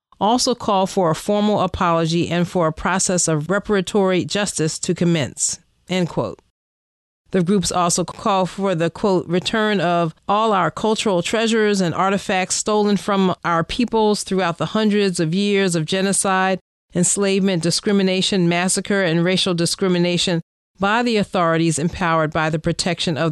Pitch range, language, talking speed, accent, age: 170-200 Hz, English, 145 wpm, American, 40-59